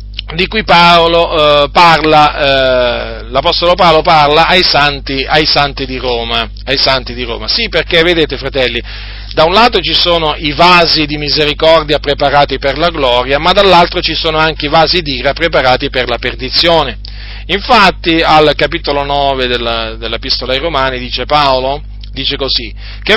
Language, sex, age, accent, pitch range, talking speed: Italian, male, 40-59, native, 130-170 Hz, 160 wpm